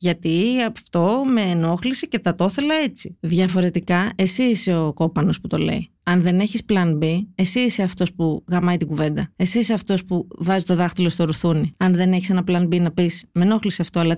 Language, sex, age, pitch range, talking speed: Greek, female, 30-49, 170-210 Hz, 210 wpm